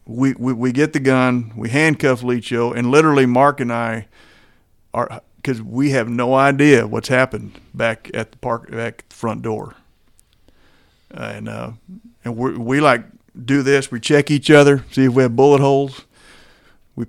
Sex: male